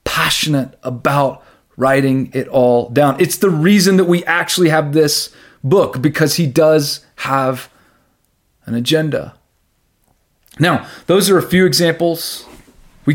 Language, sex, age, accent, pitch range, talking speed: English, male, 30-49, American, 140-175 Hz, 130 wpm